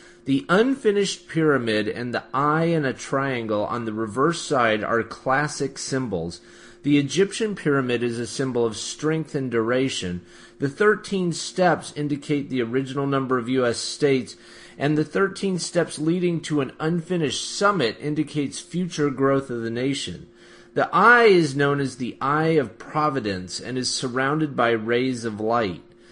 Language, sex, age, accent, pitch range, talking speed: English, male, 30-49, American, 120-160 Hz, 155 wpm